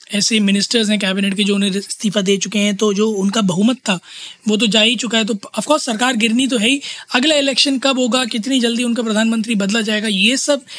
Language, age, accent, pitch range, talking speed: Hindi, 20-39, native, 205-235 Hz, 235 wpm